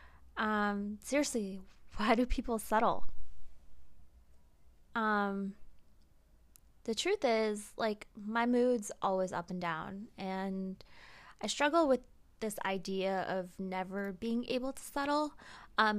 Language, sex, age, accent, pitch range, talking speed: English, female, 20-39, American, 195-245 Hz, 115 wpm